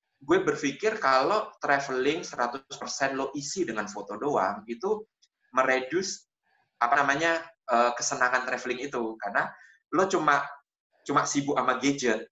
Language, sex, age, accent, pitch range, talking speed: Indonesian, male, 20-39, native, 125-185 Hz, 115 wpm